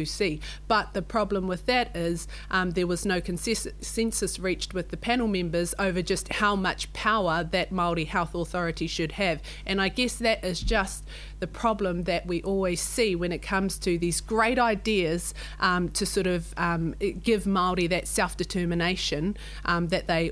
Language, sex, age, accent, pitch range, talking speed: English, female, 30-49, Australian, 170-195 Hz, 175 wpm